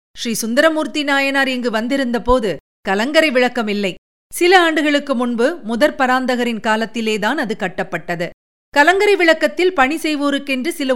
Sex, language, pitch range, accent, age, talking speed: female, Tamil, 205-300 Hz, native, 50-69, 115 wpm